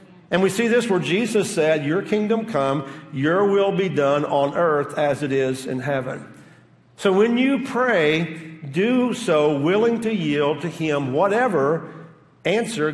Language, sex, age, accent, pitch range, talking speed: English, male, 50-69, American, 150-195 Hz, 160 wpm